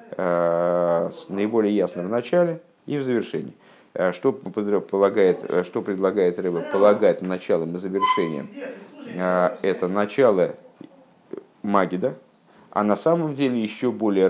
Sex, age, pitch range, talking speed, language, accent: male, 50-69, 90-130 Hz, 100 wpm, Russian, native